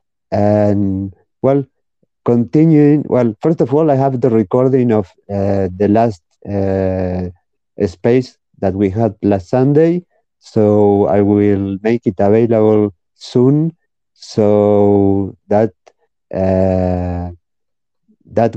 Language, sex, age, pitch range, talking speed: English, male, 50-69, 100-120 Hz, 105 wpm